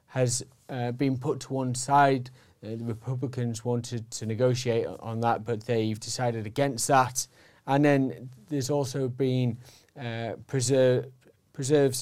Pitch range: 120-135 Hz